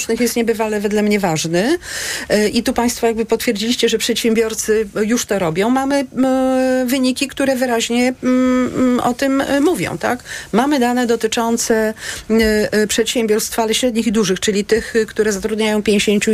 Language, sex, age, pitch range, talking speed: Polish, female, 40-59, 210-235 Hz, 130 wpm